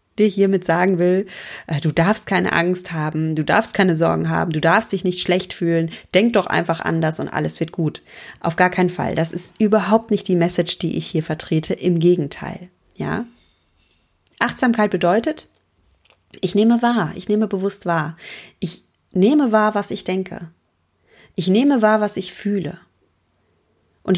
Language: German